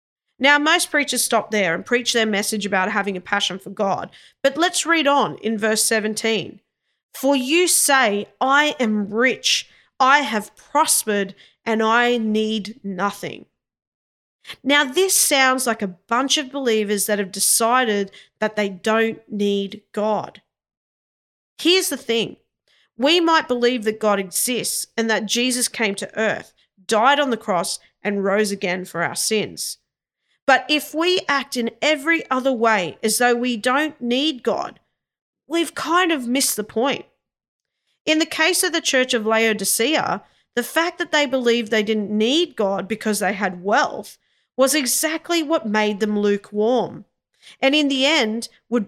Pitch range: 210-275 Hz